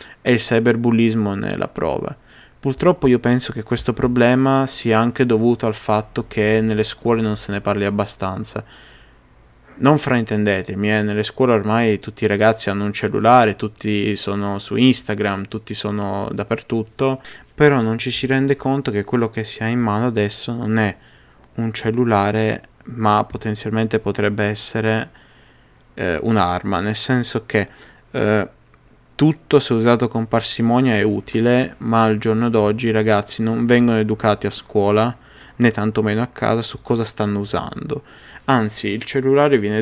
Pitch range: 105-120 Hz